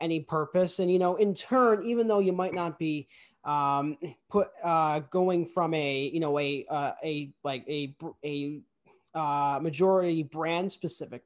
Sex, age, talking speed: male, 20-39, 165 wpm